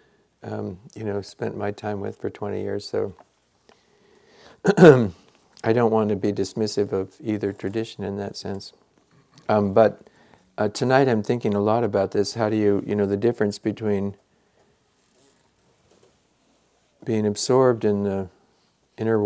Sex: male